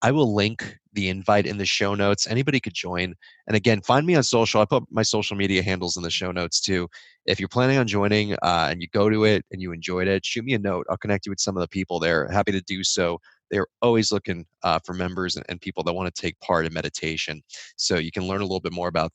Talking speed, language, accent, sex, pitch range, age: 265 wpm, English, American, male, 95-110 Hz, 20-39